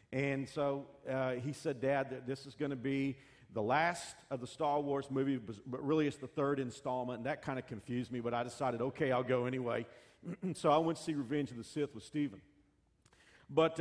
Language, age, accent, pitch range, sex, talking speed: English, 40-59, American, 125-150 Hz, male, 215 wpm